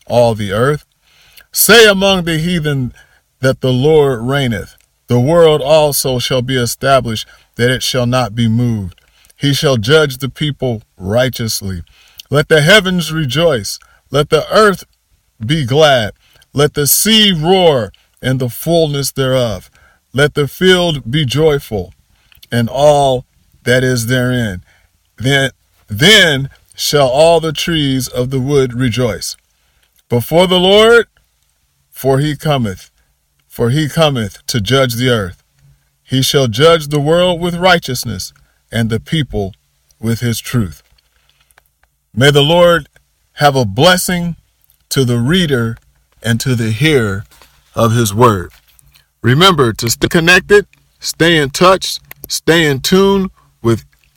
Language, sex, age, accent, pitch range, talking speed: English, male, 40-59, American, 115-160 Hz, 130 wpm